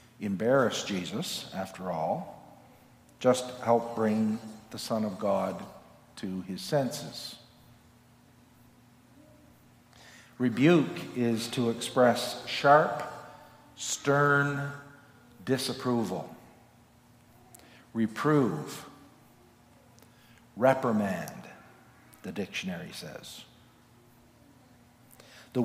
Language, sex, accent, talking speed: English, male, American, 65 wpm